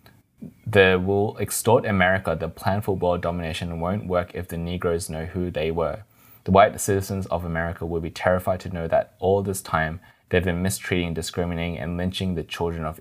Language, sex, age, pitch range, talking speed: English, male, 20-39, 80-100 Hz, 190 wpm